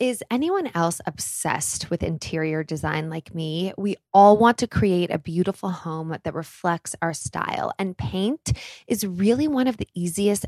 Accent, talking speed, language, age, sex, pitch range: American, 165 wpm, English, 20-39, female, 170-220 Hz